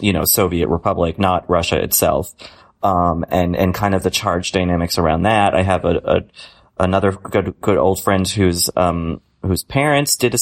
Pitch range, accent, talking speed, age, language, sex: 90-105 Hz, American, 185 wpm, 30-49, English, male